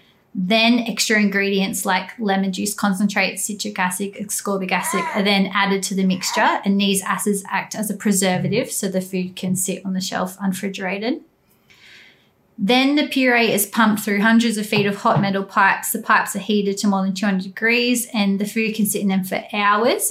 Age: 20-39